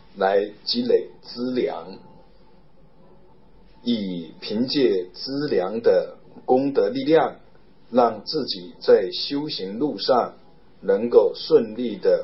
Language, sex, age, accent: Chinese, male, 50-69, native